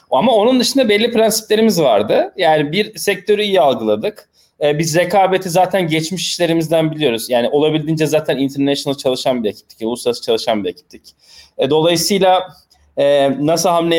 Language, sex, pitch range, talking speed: Turkish, male, 140-175 Hz, 145 wpm